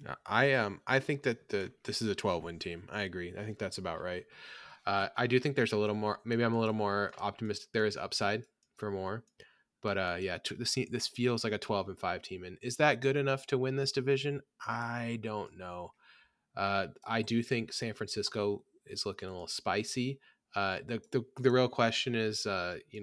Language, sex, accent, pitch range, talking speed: English, male, American, 95-125 Hz, 215 wpm